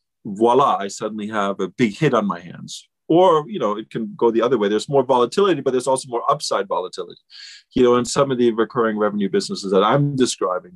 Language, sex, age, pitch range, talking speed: English, male, 40-59, 95-125 Hz, 225 wpm